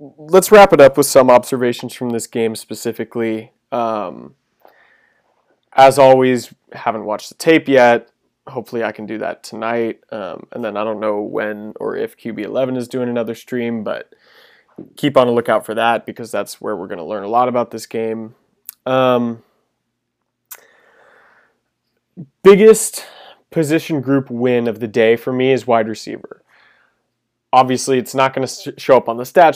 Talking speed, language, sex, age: 165 wpm, English, male, 20-39